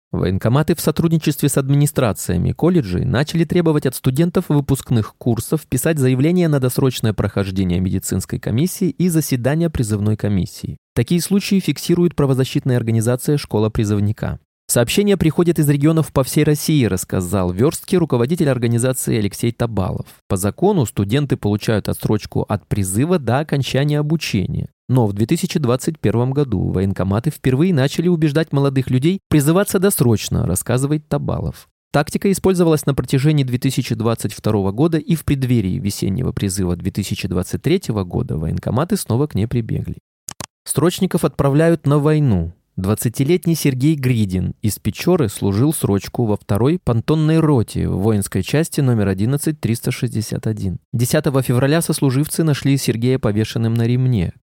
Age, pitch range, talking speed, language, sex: 20-39, 110-155 Hz, 125 wpm, Russian, male